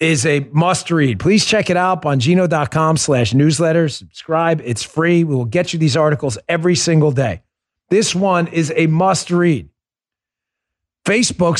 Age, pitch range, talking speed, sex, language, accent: 40-59, 150-205 Hz, 160 wpm, male, English, American